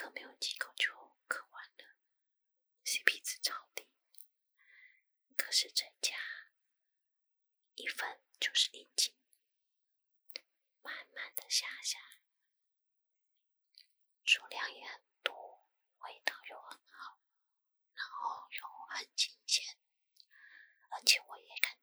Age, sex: 20-39, female